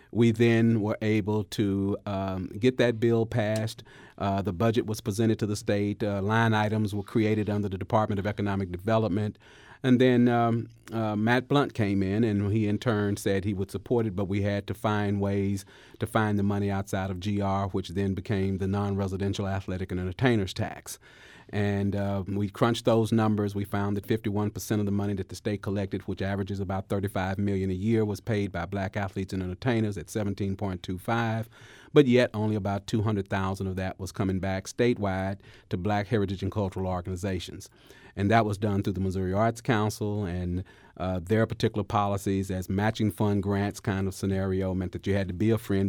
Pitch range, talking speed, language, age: 95-110 Hz, 195 wpm, English, 40-59